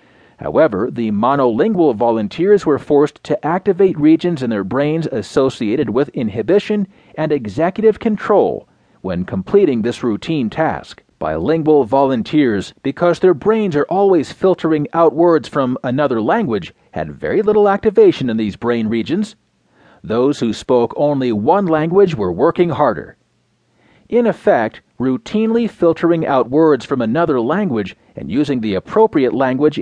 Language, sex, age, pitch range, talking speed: English, male, 40-59, 125-195 Hz, 135 wpm